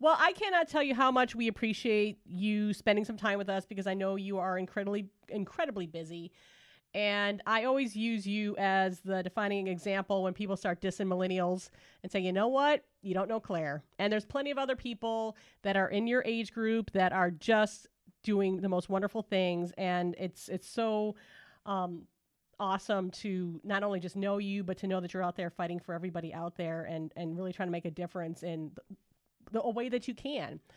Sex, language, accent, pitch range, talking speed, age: female, English, American, 185-220 Hz, 205 wpm, 30-49